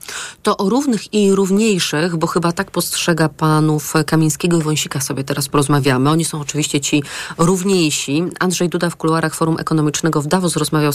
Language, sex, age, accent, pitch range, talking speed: Polish, female, 30-49, native, 160-200 Hz, 165 wpm